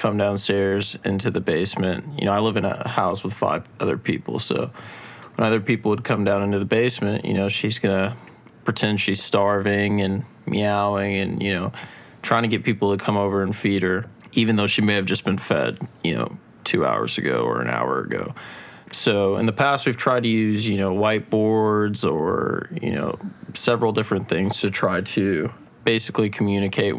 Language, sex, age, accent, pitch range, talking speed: English, male, 20-39, American, 100-115 Hz, 195 wpm